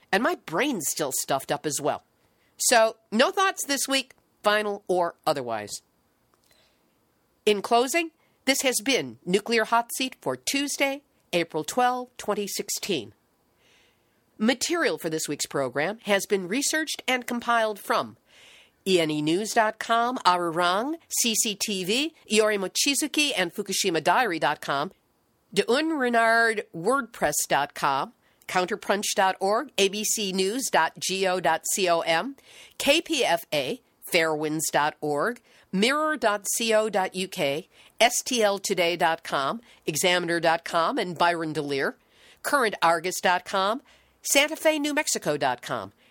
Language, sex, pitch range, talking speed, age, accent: English, female, 175-250 Hz, 80 wpm, 50-69, American